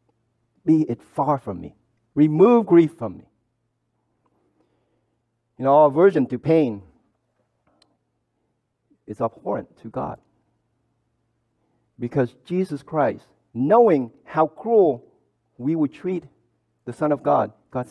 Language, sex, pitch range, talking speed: English, male, 115-150 Hz, 110 wpm